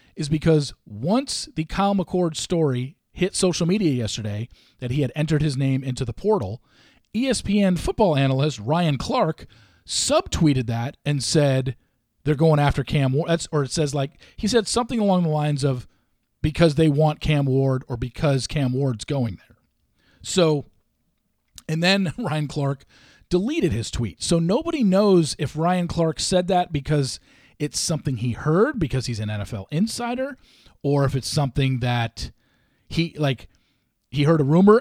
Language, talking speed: English, 160 wpm